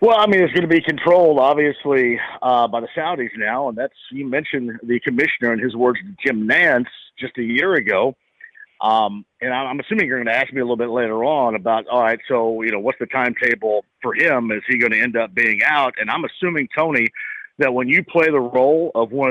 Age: 50-69